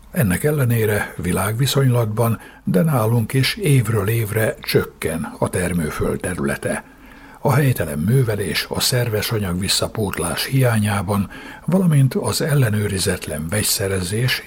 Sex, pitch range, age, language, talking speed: male, 95-130 Hz, 60-79, Hungarian, 100 wpm